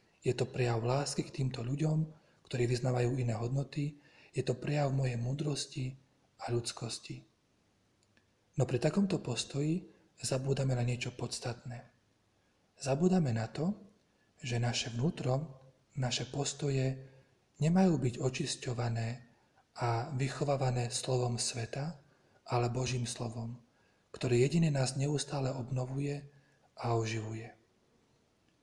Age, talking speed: 40-59, 105 wpm